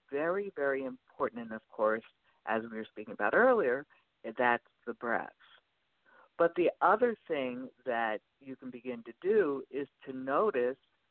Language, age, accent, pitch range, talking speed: English, 60-79, American, 125-170 Hz, 150 wpm